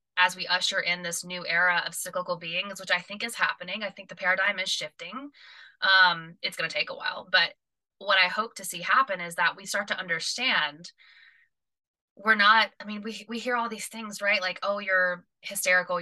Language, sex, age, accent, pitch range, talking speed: English, female, 20-39, American, 180-220 Hz, 210 wpm